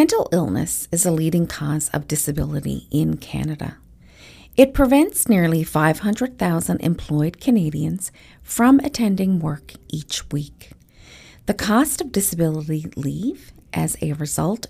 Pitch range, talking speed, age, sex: 150-220 Hz, 120 wpm, 40-59, female